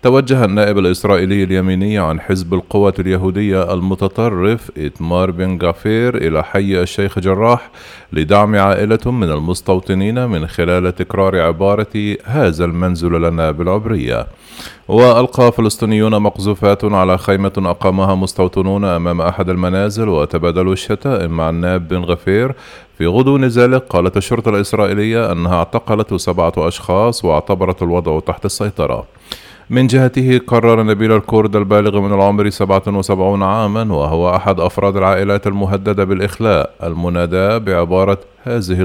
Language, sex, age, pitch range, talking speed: Arabic, male, 30-49, 90-105 Hz, 120 wpm